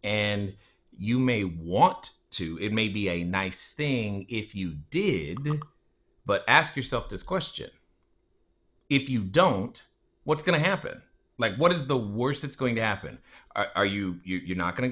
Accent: American